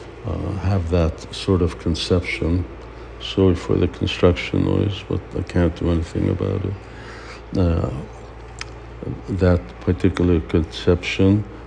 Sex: male